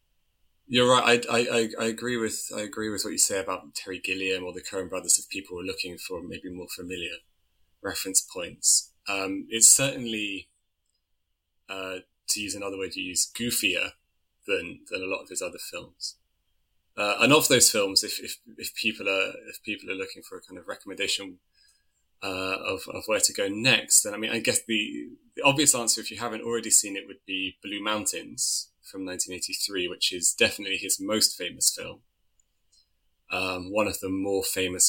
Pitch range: 85-105 Hz